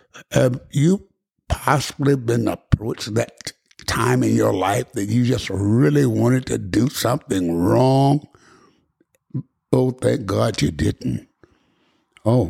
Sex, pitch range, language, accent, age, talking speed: male, 125-160 Hz, English, American, 60-79, 120 wpm